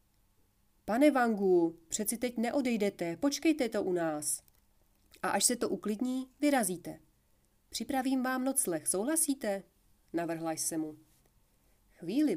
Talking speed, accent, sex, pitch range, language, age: 110 wpm, native, female, 160-210 Hz, Czech, 30-49